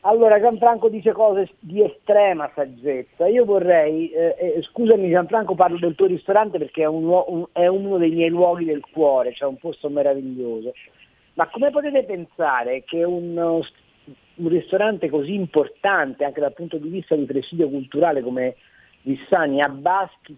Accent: native